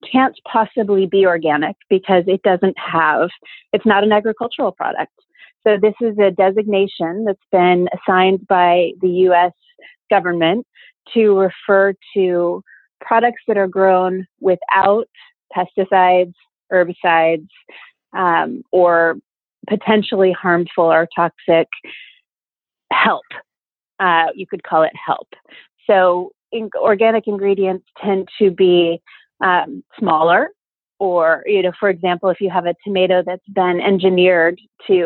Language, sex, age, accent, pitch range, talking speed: English, female, 30-49, American, 175-210 Hz, 120 wpm